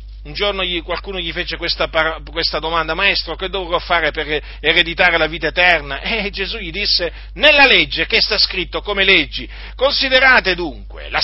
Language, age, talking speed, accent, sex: Italian, 50-69, 160 wpm, native, male